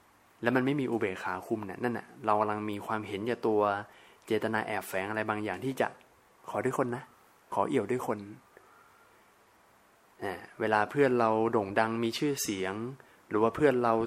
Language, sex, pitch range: Thai, male, 105-125 Hz